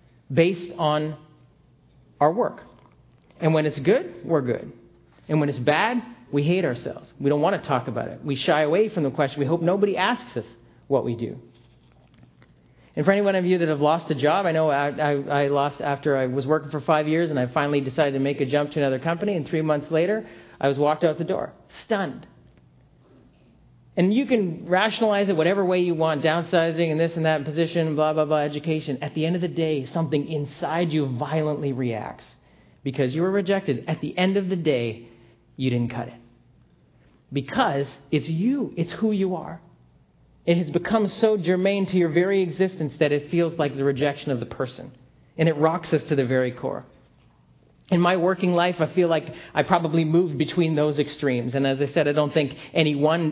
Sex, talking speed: male, 205 wpm